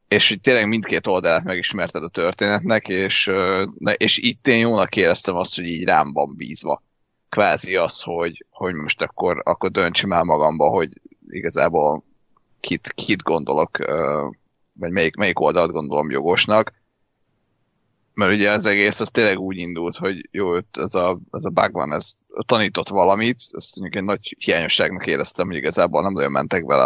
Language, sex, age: Hungarian, male, 30-49